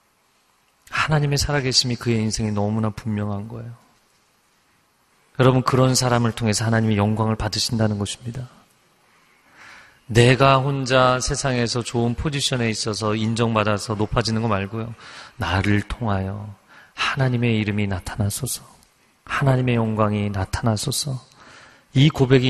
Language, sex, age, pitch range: Korean, male, 30-49, 105-125 Hz